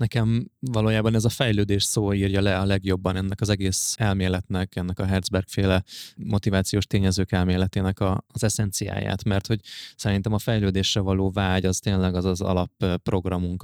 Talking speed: 150 wpm